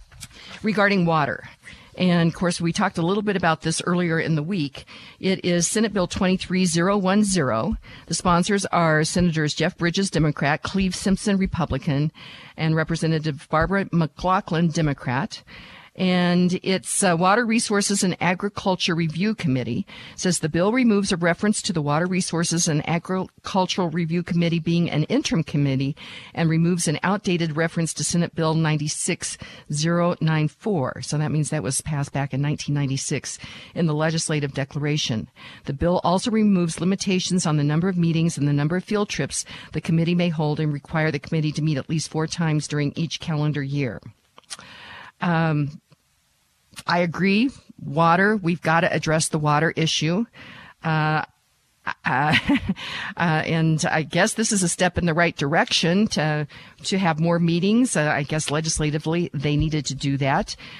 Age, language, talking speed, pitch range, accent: 50-69, English, 160 wpm, 155-185 Hz, American